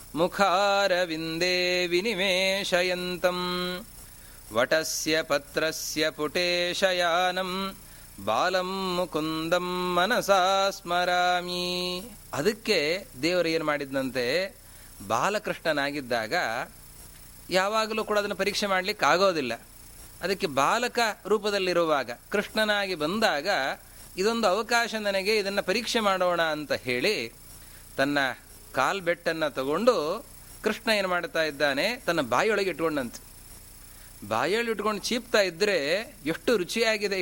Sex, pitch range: male, 135-195 Hz